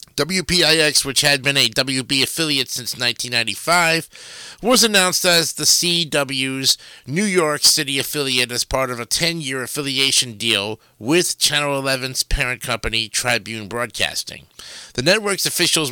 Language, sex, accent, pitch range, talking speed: English, male, American, 125-150 Hz, 130 wpm